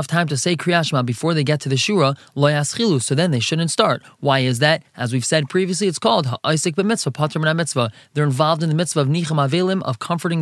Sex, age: male, 20-39